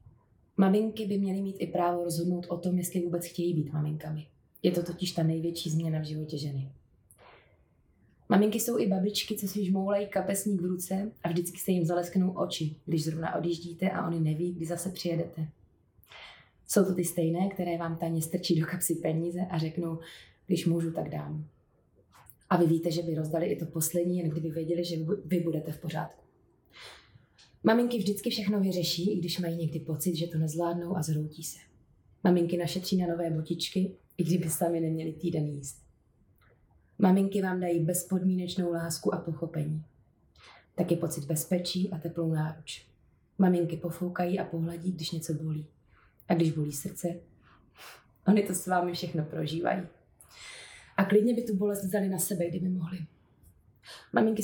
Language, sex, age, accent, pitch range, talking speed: Czech, female, 20-39, native, 165-185 Hz, 165 wpm